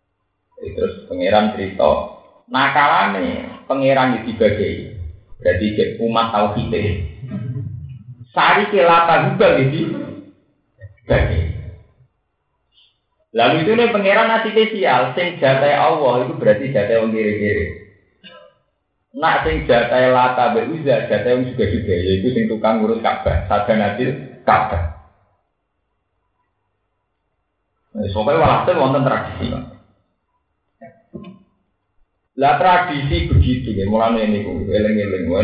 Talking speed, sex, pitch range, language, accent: 100 wpm, male, 100-130 Hz, Indonesian, native